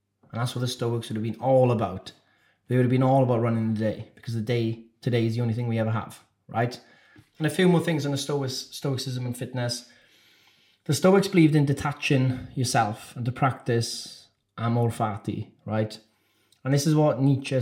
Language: English